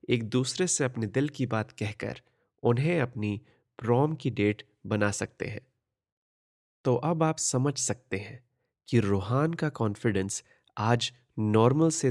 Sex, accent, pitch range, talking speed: male, native, 110-130 Hz, 145 wpm